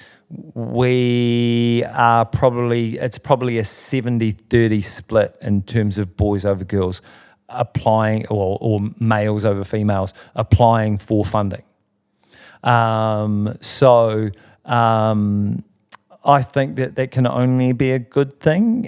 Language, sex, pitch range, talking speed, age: English, male, 105-130 Hz, 115 wpm, 40-59